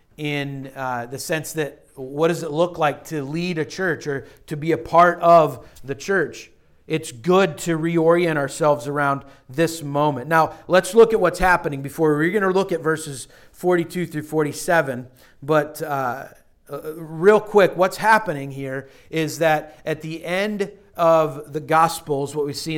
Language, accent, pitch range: English, American, 145-175 Hz